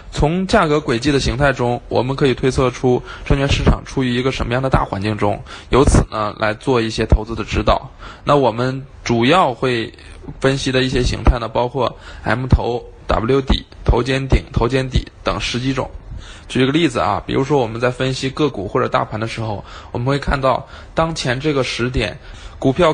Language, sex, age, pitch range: Chinese, male, 20-39, 115-150 Hz